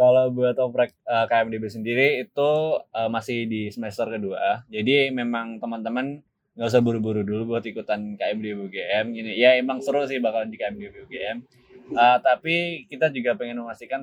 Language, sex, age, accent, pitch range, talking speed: Indonesian, male, 20-39, native, 110-130 Hz, 165 wpm